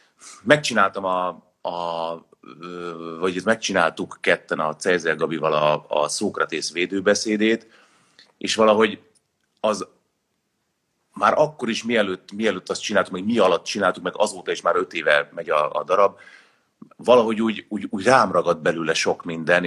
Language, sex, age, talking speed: Hungarian, male, 30-49, 135 wpm